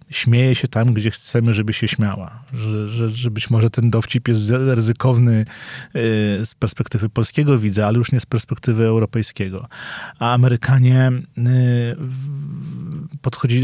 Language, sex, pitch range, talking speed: Polish, male, 110-125 Hz, 130 wpm